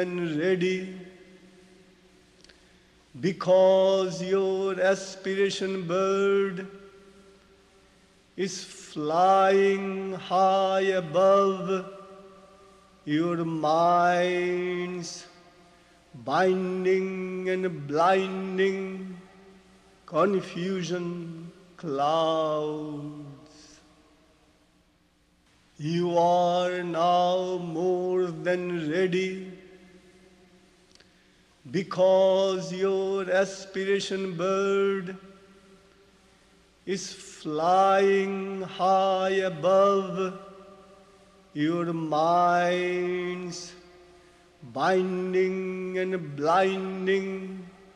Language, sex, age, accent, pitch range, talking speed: Russian, male, 50-69, Indian, 175-190 Hz, 45 wpm